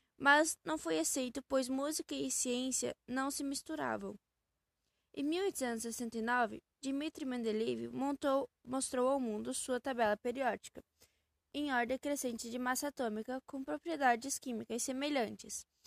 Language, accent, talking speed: Portuguese, Brazilian, 120 wpm